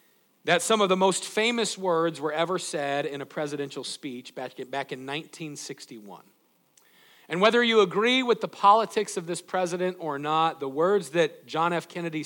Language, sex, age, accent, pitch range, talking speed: English, male, 50-69, American, 160-205 Hz, 170 wpm